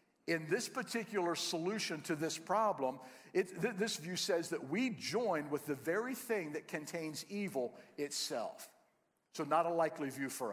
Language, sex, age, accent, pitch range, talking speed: English, male, 50-69, American, 140-185 Hz, 155 wpm